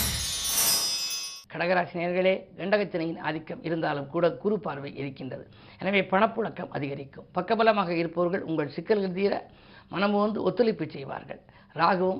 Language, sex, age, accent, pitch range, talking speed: Tamil, female, 50-69, native, 160-195 Hz, 100 wpm